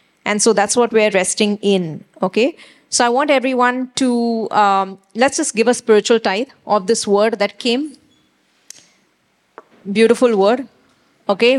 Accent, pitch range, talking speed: Indian, 210-245 Hz, 145 wpm